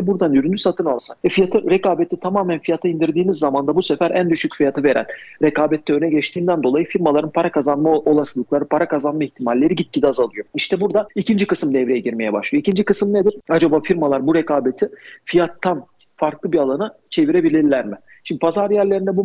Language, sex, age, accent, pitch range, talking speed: Turkish, male, 40-59, native, 140-180 Hz, 170 wpm